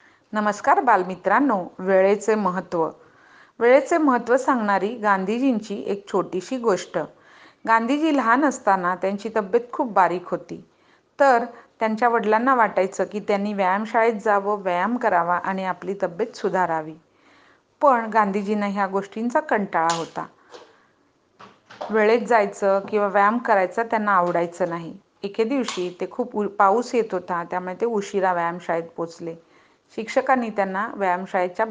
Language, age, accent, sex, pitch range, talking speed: Hindi, 40-59, native, female, 180-225 Hz, 110 wpm